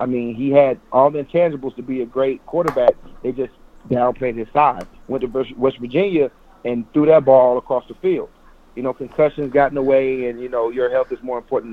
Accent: American